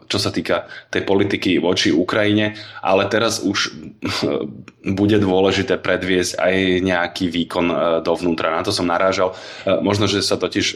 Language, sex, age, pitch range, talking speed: Slovak, male, 20-39, 85-95 Hz, 140 wpm